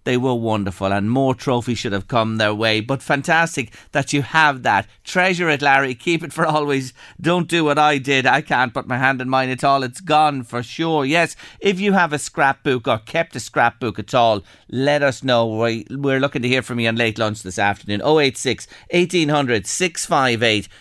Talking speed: 205 wpm